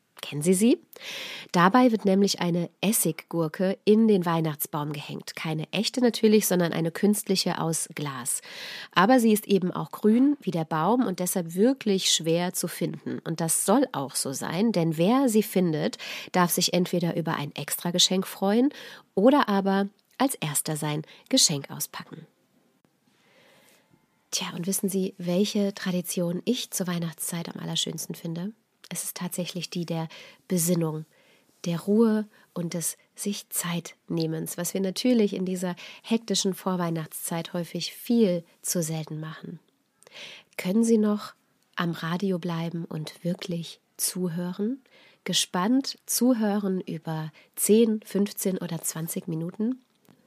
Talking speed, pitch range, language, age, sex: 135 wpm, 170-210 Hz, German, 30-49, female